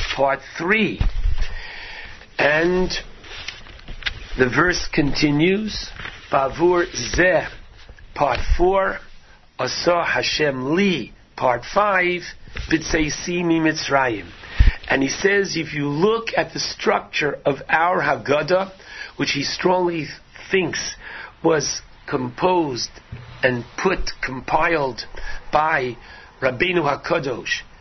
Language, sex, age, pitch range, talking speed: English, male, 60-79, 150-175 Hz, 90 wpm